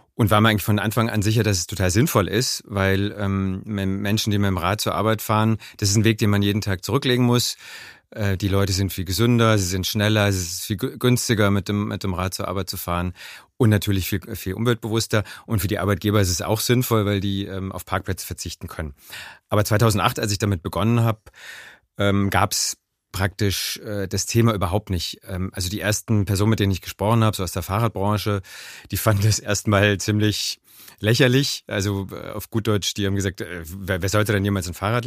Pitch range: 95-110 Hz